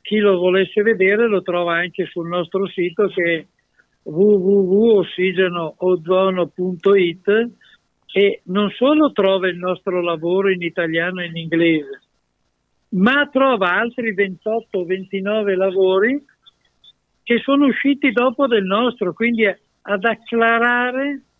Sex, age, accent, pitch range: male, 60-79, native, 180-215 Hz